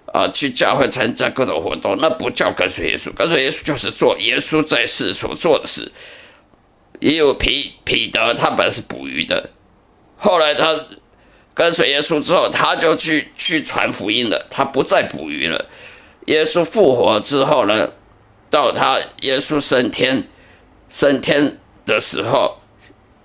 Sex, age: male, 50-69